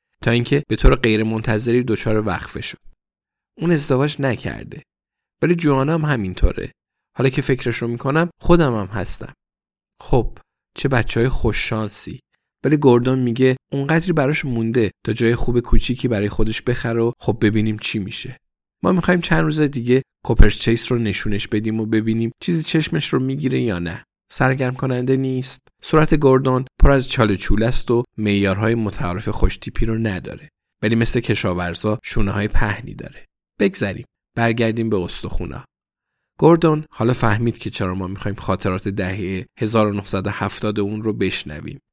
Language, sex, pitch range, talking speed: Persian, male, 105-130 Hz, 150 wpm